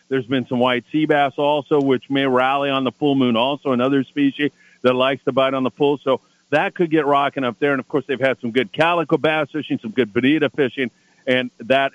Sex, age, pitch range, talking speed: male, 50-69, 125-155 Hz, 235 wpm